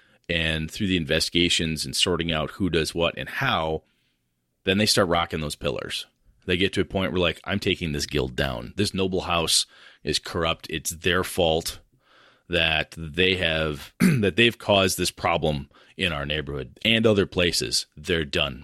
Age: 30-49